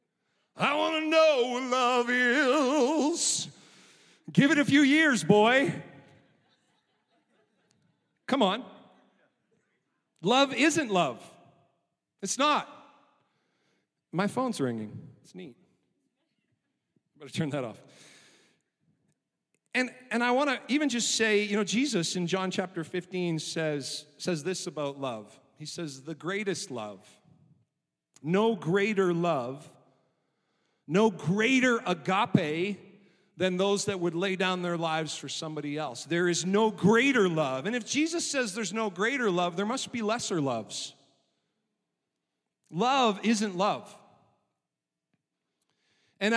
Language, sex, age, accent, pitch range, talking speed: English, male, 40-59, American, 175-235 Hz, 125 wpm